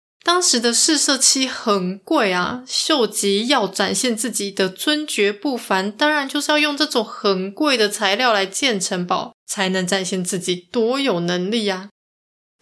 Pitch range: 185-235 Hz